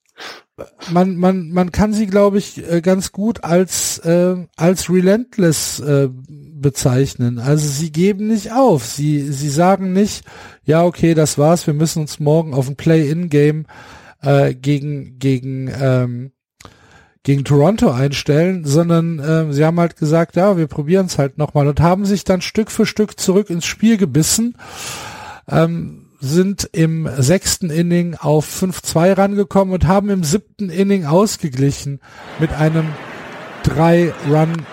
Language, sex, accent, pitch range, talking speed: German, male, German, 150-185 Hz, 145 wpm